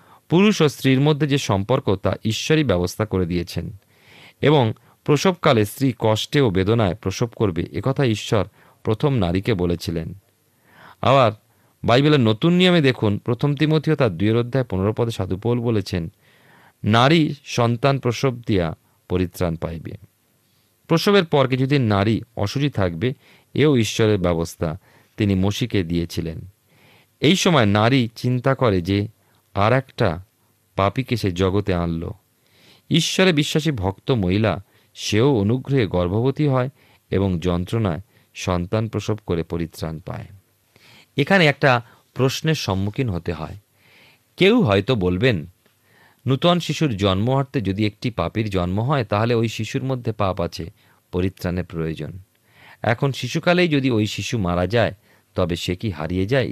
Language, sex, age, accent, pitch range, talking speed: Bengali, male, 40-59, native, 95-130 Hz, 120 wpm